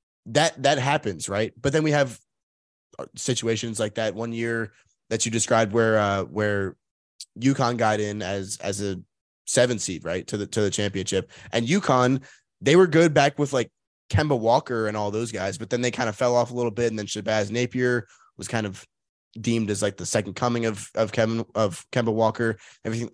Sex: male